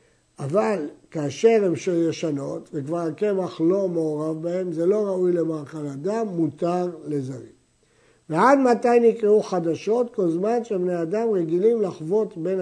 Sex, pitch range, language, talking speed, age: male, 160-215 Hz, Hebrew, 130 wpm, 60-79